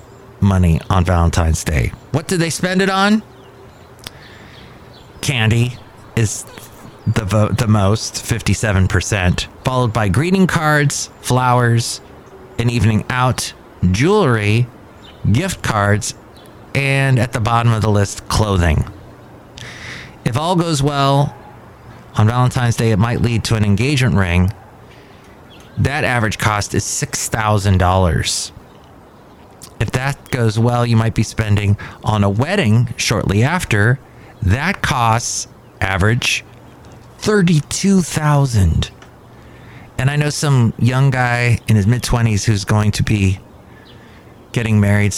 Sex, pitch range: male, 100-125 Hz